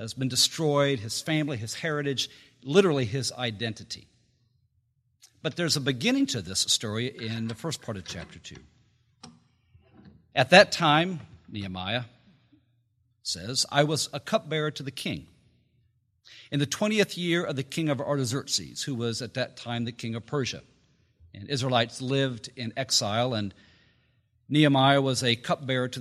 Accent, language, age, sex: American, English, 50-69, male